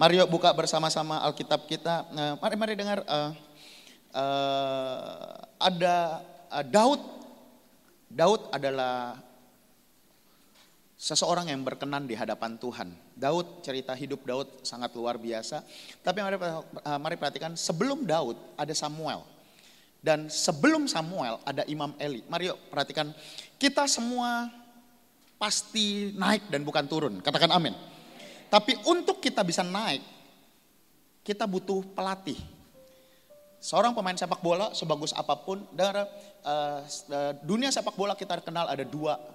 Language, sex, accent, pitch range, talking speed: Indonesian, male, native, 135-200 Hz, 115 wpm